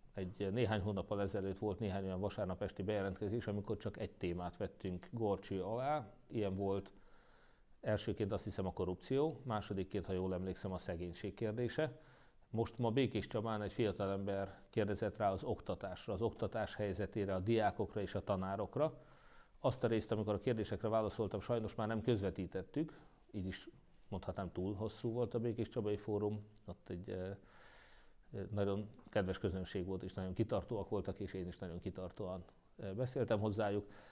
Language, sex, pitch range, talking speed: Hungarian, male, 95-110 Hz, 155 wpm